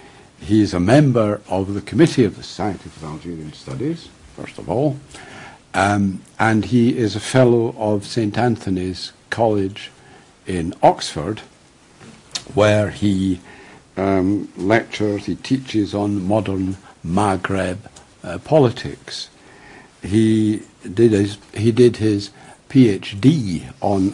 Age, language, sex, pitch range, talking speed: 60-79, English, male, 95-115 Hz, 115 wpm